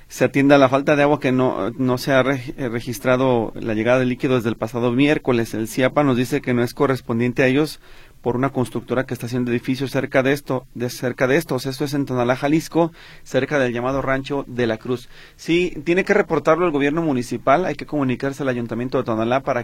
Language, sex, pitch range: Spanish, male, 120-145 Hz